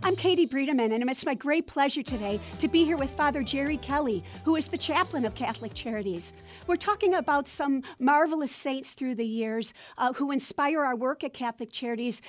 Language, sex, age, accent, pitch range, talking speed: English, female, 50-69, American, 255-295 Hz, 195 wpm